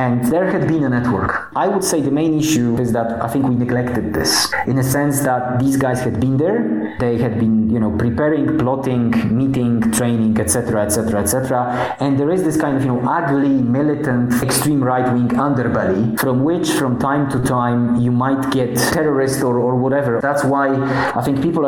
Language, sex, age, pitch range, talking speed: English, male, 30-49, 115-140 Hz, 195 wpm